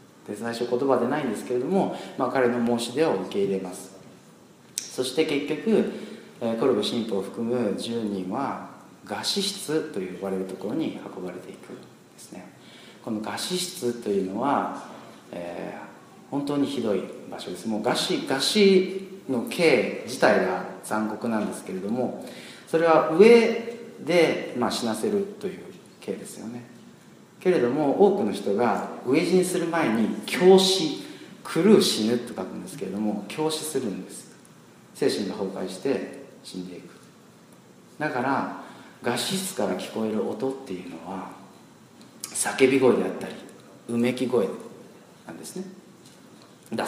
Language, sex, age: Japanese, male, 40-59